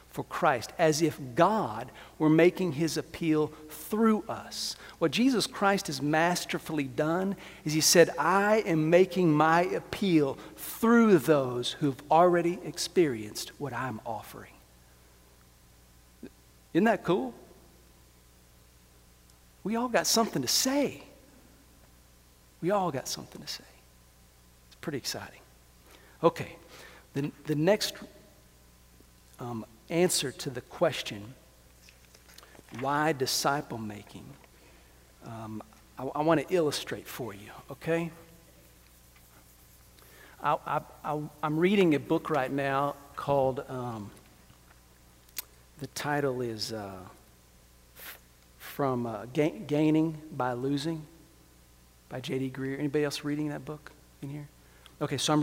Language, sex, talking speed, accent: English, male, 110 wpm, American